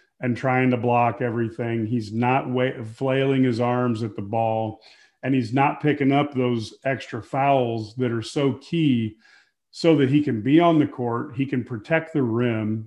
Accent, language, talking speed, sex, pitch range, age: American, English, 175 wpm, male, 115-140 Hz, 40-59